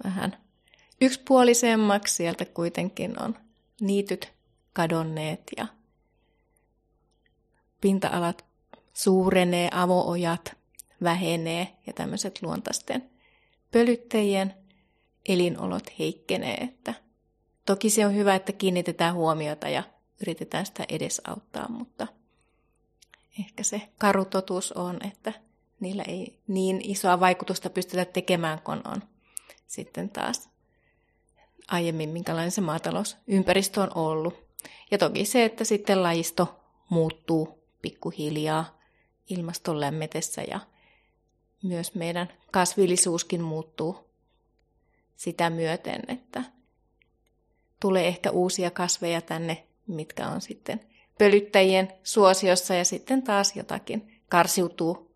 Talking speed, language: 95 wpm, Finnish